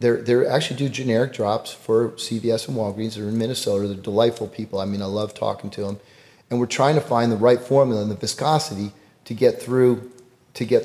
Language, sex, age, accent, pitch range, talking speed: English, male, 30-49, American, 110-130 Hz, 210 wpm